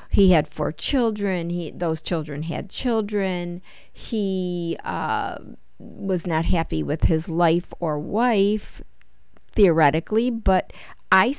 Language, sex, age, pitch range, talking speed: English, female, 50-69, 165-205 Hz, 115 wpm